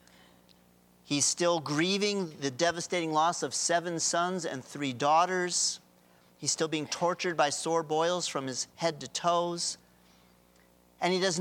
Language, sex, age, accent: English, male, 40-59, American